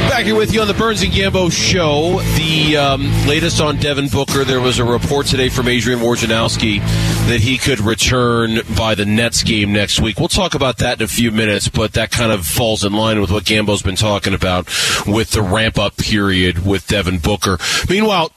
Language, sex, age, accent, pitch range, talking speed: English, male, 30-49, American, 105-125 Hz, 205 wpm